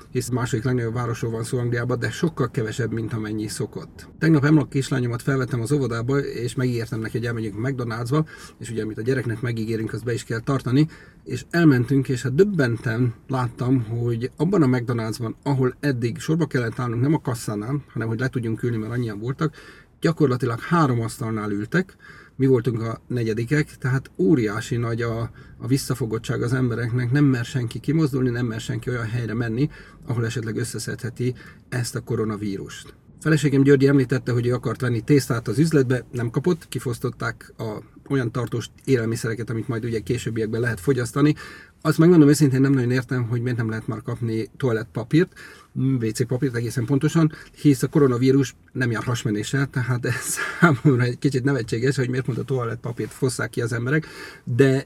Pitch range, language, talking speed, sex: 115-140 Hz, Hungarian, 175 wpm, male